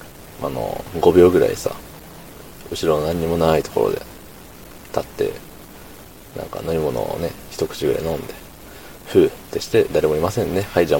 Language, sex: Japanese, male